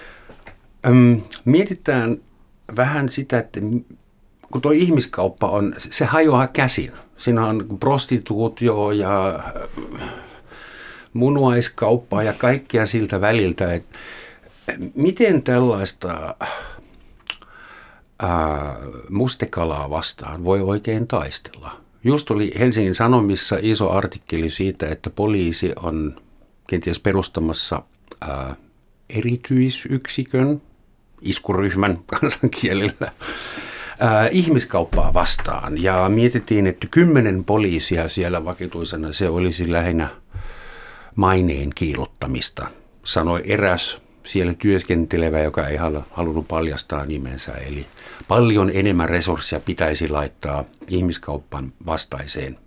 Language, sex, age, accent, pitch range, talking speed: Finnish, male, 60-79, native, 80-115 Hz, 85 wpm